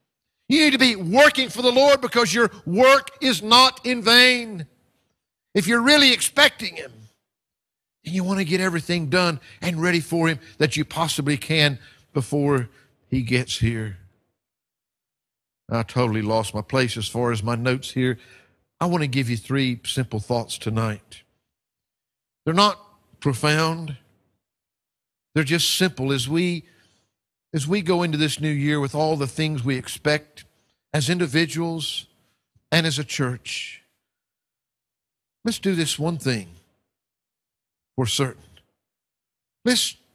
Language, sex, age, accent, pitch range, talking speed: English, male, 50-69, American, 115-175 Hz, 140 wpm